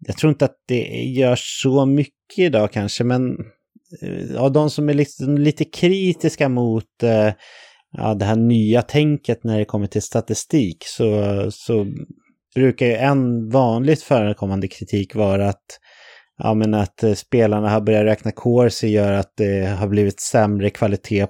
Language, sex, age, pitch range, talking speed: English, male, 30-49, 100-125 Hz, 150 wpm